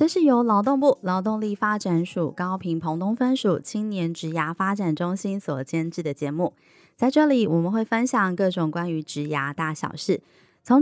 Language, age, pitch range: Chinese, 20-39, 180-245 Hz